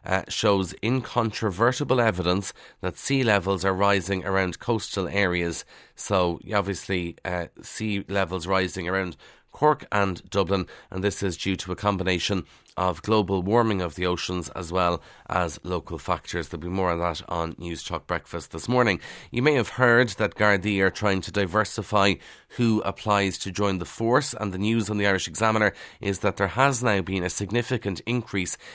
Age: 30-49